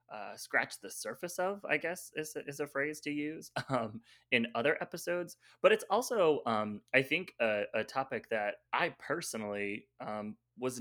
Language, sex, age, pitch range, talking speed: English, male, 20-39, 110-140 Hz, 170 wpm